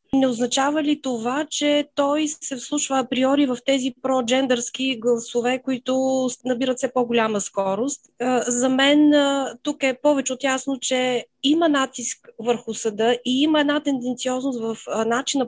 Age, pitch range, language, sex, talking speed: 20-39, 235-275 Hz, Bulgarian, female, 140 wpm